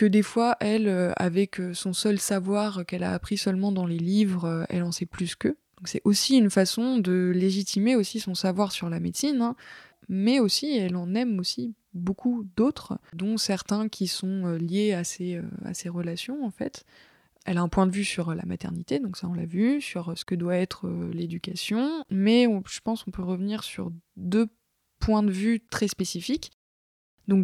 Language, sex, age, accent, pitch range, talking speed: French, female, 20-39, French, 180-220 Hz, 195 wpm